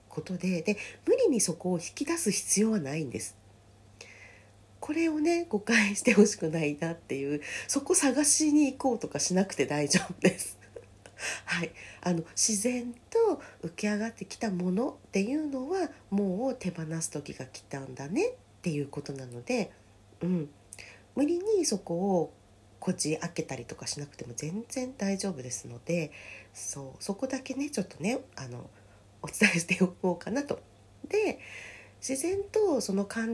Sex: female